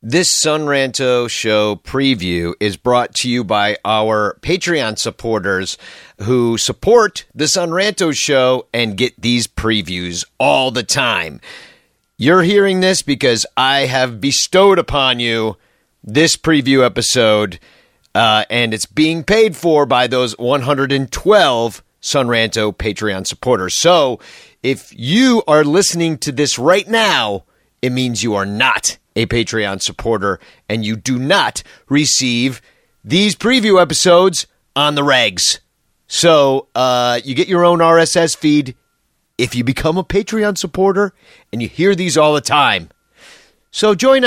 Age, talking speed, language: 40-59, 135 wpm, English